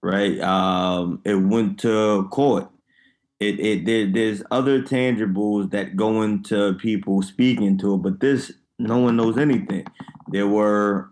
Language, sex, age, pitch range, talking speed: English, male, 20-39, 100-115 Hz, 140 wpm